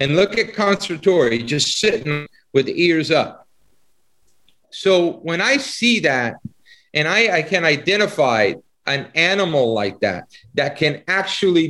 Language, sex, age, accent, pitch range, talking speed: English, male, 50-69, American, 130-180 Hz, 135 wpm